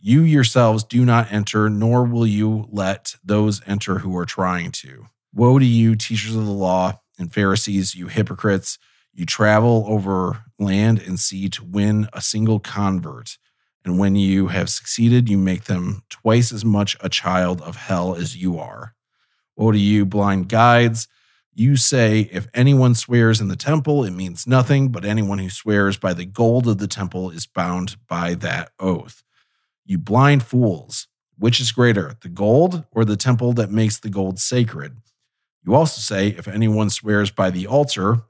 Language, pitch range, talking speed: English, 95-120 Hz, 175 wpm